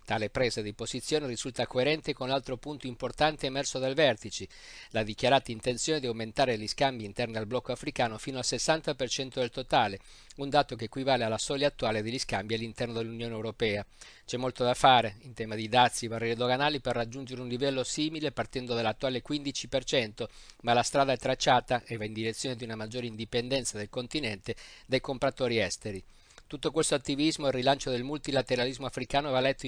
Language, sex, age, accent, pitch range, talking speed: Italian, male, 50-69, native, 115-135 Hz, 180 wpm